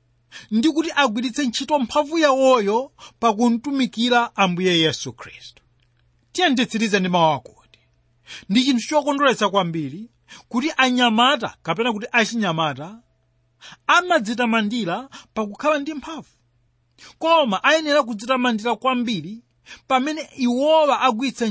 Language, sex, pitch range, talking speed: English, male, 195-285 Hz, 125 wpm